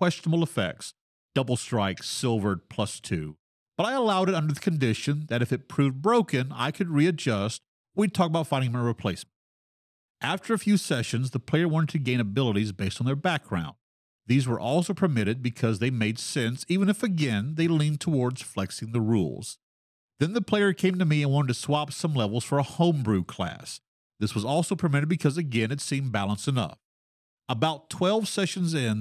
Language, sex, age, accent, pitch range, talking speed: English, male, 40-59, American, 115-165 Hz, 185 wpm